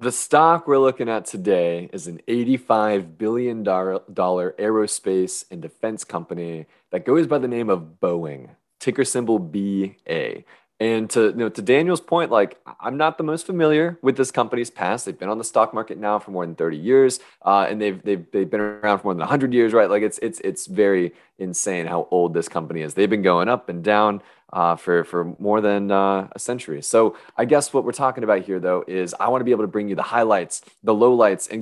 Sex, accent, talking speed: male, American, 220 wpm